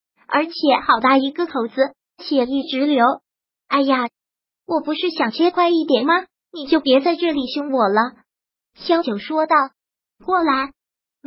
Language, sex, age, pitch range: Chinese, male, 20-39, 270-330 Hz